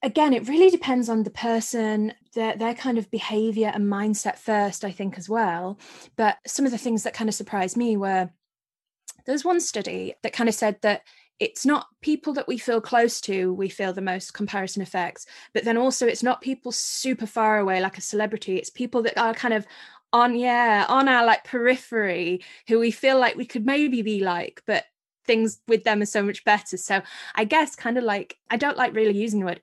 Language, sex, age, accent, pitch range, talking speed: English, female, 20-39, British, 195-245 Hz, 215 wpm